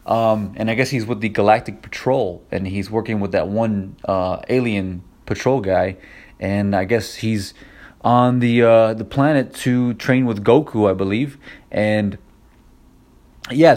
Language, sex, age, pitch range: English, male, 30-49, 105-125 Hz